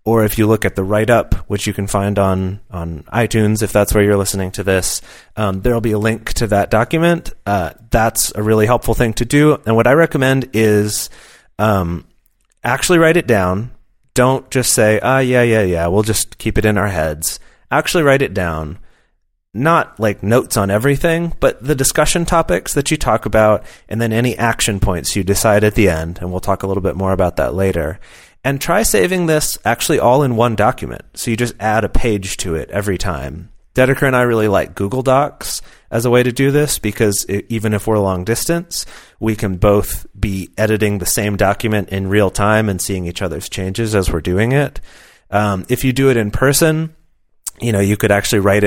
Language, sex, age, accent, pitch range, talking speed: English, male, 30-49, American, 95-120 Hz, 210 wpm